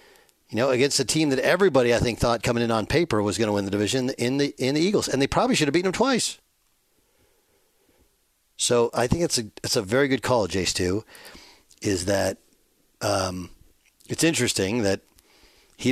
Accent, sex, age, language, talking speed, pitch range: American, male, 50-69, English, 195 wpm, 105-135 Hz